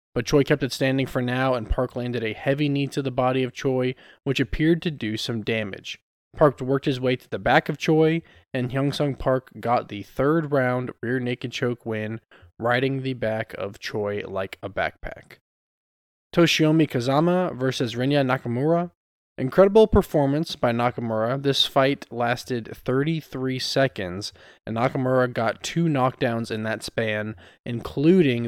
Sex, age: male, 20-39